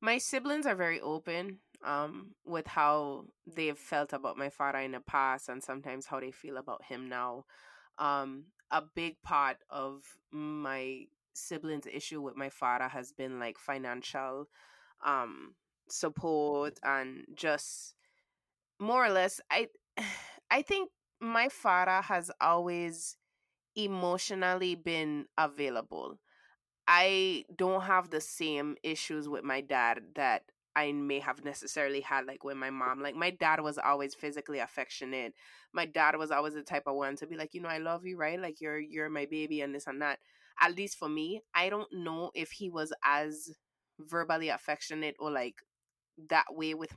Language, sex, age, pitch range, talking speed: English, female, 20-39, 140-175 Hz, 160 wpm